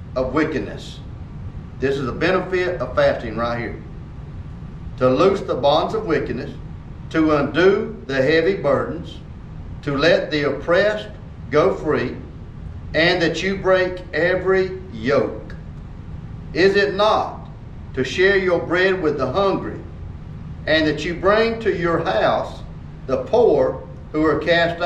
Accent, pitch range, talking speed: American, 135-195 Hz, 135 wpm